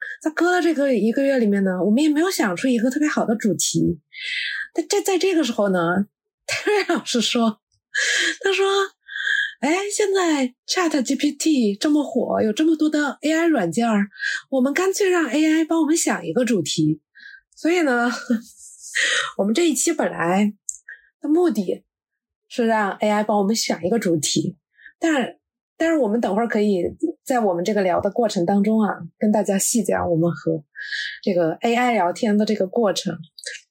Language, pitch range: Chinese, 200-315 Hz